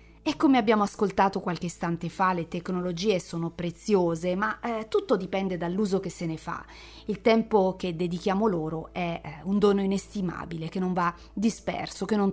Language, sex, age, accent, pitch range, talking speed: Italian, female, 30-49, native, 175-225 Hz, 175 wpm